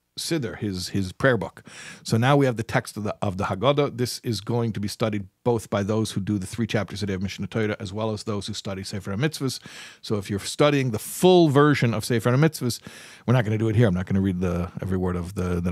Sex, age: male, 50-69